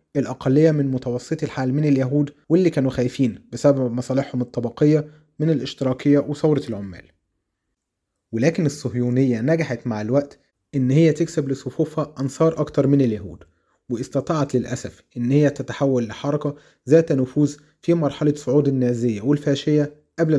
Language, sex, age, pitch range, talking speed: Arabic, male, 30-49, 125-150 Hz, 125 wpm